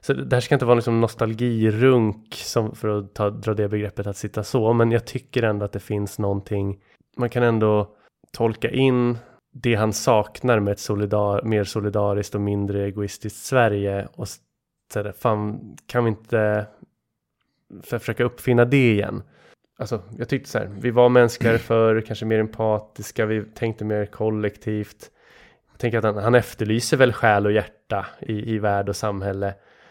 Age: 20-39